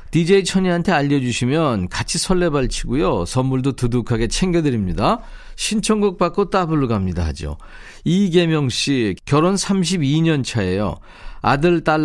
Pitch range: 120-160 Hz